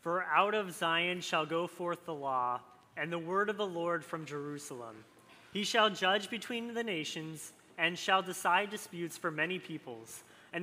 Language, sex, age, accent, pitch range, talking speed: English, male, 30-49, American, 150-205 Hz, 175 wpm